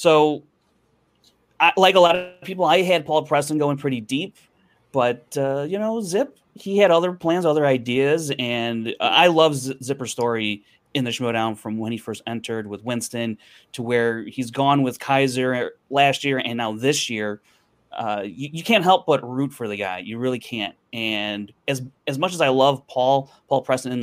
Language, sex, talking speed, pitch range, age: English, male, 190 wpm, 115-145 Hz, 30-49